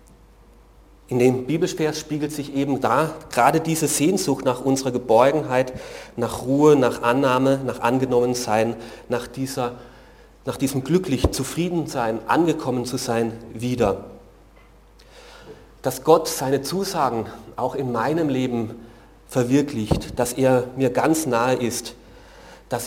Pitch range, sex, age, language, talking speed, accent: 120-155 Hz, male, 40-59, German, 120 wpm, German